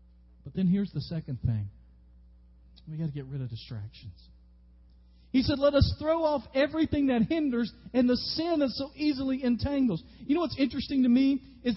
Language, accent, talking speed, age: English, American, 185 wpm, 40-59